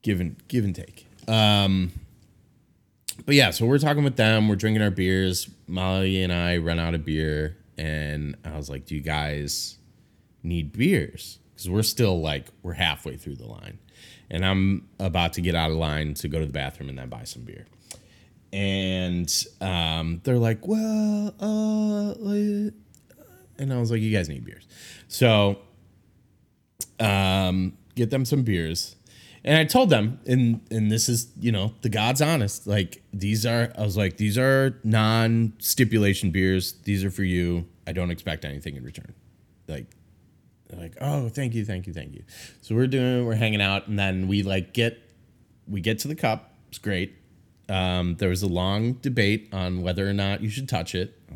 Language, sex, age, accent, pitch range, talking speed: English, male, 30-49, American, 90-115 Hz, 180 wpm